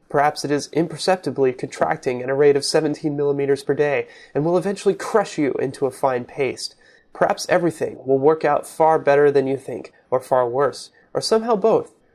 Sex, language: male, English